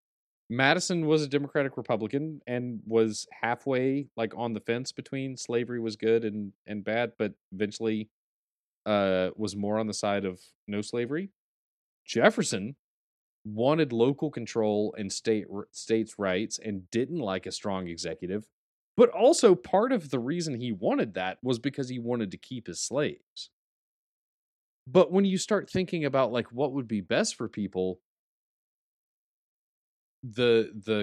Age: 30-49